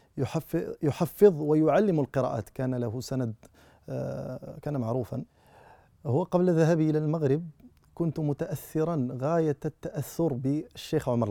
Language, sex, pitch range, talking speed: Arabic, male, 125-175 Hz, 100 wpm